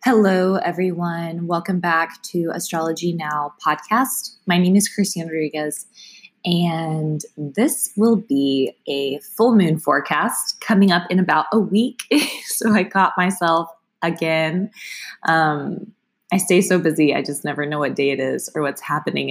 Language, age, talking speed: English, 20-39, 150 wpm